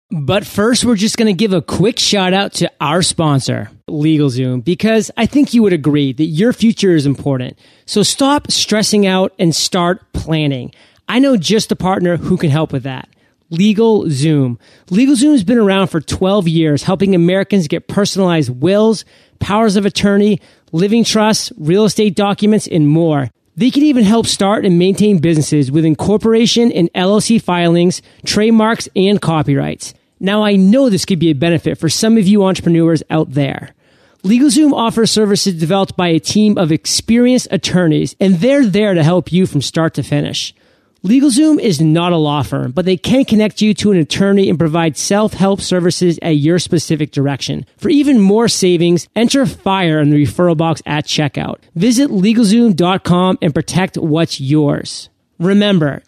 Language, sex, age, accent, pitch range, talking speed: English, male, 30-49, American, 160-215 Hz, 170 wpm